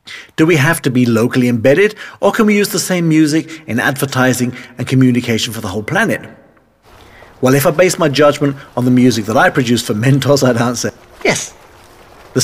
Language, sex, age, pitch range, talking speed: English, male, 50-69, 125-165 Hz, 195 wpm